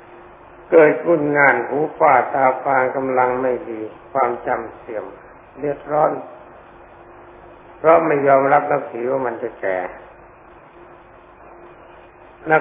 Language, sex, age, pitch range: Thai, male, 60-79, 120-145 Hz